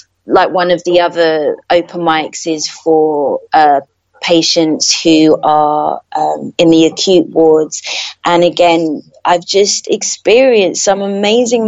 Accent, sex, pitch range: British, female, 175-205 Hz